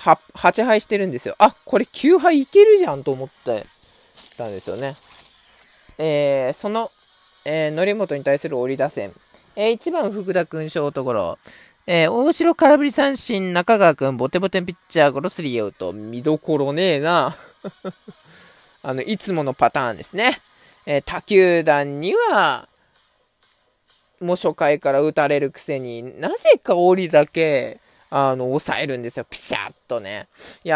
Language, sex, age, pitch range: Japanese, male, 20-39, 140-190 Hz